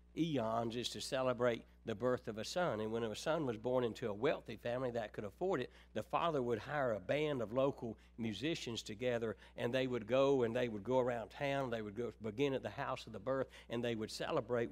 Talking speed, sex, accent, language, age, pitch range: 230 wpm, male, American, English, 60-79, 95-130 Hz